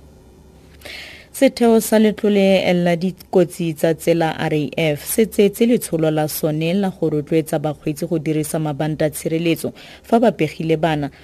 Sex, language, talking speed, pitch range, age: female, English, 110 wpm, 150-195 Hz, 30-49